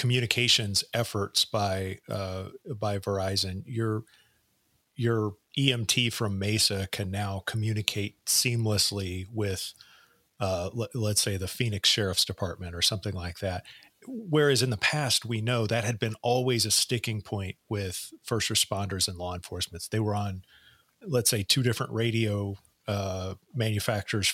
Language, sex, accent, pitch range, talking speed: English, male, American, 100-120 Hz, 140 wpm